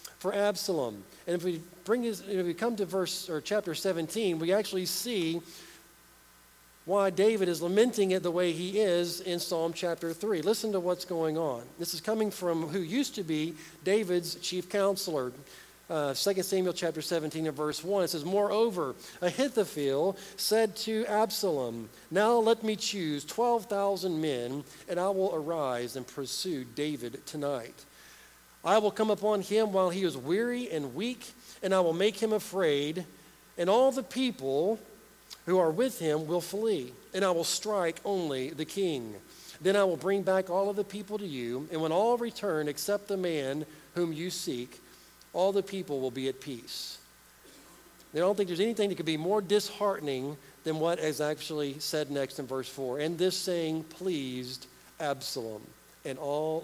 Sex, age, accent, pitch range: male, 50-69, American, 155-205 Hz